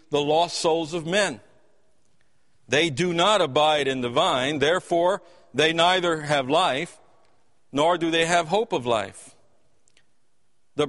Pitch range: 135-180 Hz